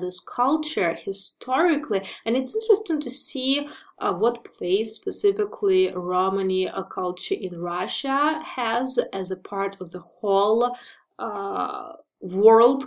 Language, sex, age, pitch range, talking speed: English, female, 20-39, 195-270 Hz, 125 wpm